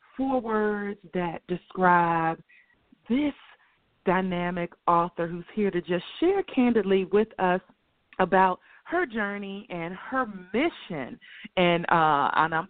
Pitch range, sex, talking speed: 180-230 Hz, female, 120 wpm